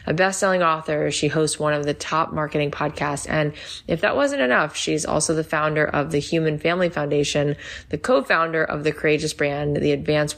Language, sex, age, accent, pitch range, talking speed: English, female, 20-39, American, 145-165 Hz, 190 wpm